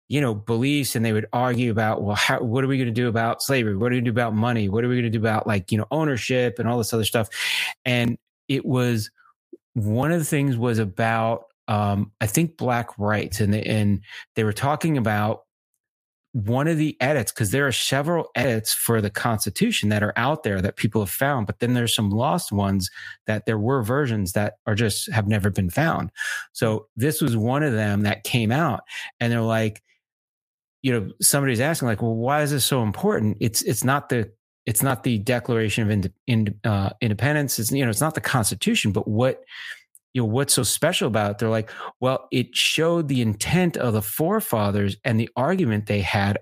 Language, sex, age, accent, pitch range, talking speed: English, male, 30-49, American, 110-130 Hz, 215 wpm